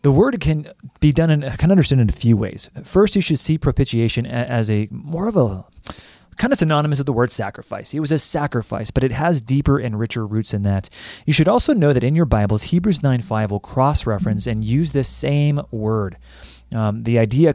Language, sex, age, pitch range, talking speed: English, male, 30-49, 110-140 Hz, 220 wpm